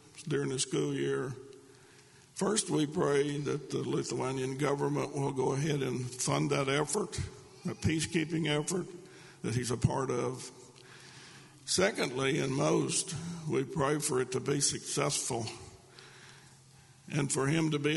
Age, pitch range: 60-79, 125-150 Hz